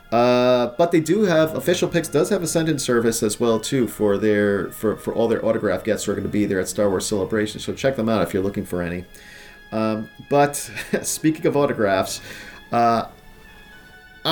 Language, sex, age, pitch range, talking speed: English, male, 40-59, 100-115 Hz, 195 wpm